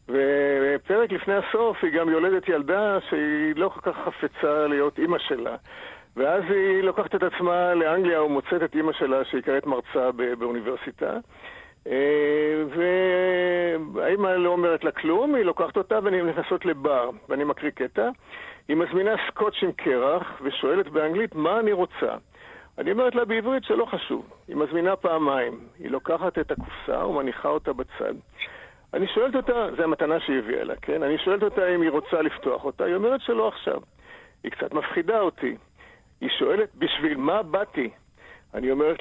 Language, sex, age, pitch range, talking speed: Hebrew, male, 50-69, 155-215 Hz, 155 wpm